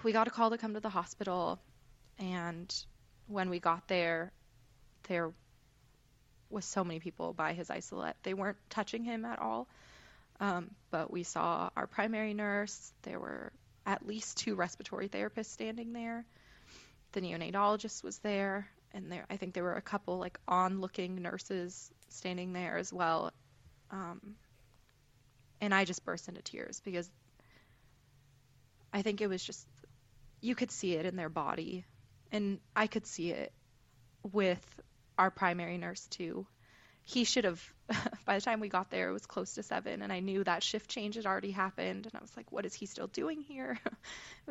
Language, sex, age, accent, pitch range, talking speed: English, female, 20-39, American, 130-205 Hz, 170 wpm